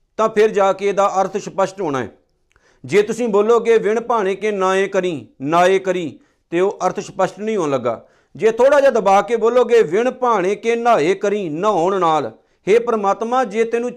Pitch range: 190-235 Hz